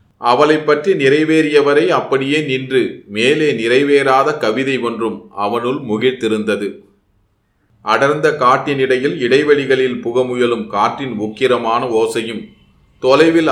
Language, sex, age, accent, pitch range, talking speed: Tamil, male, 30-49, native, 110-140 Hz, 85 wpm